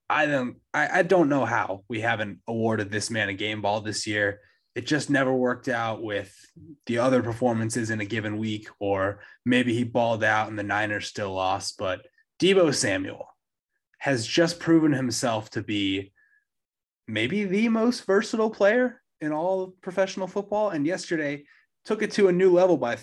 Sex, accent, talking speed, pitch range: male, American, 175 wpm, 105-170 Hz